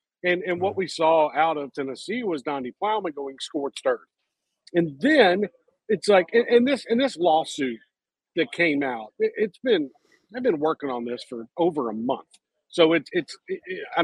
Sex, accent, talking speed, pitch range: male, American, 185 wpm, 145-215 Hz